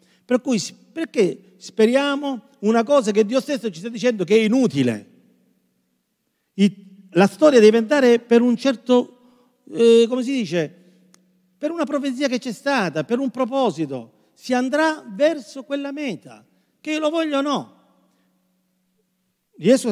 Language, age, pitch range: Italian, 50-69, 160-245 Hz